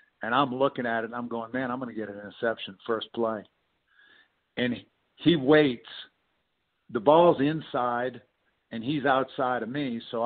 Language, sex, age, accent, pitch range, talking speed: English, male, 50-69, American, 115-145 Hz, 170 wpm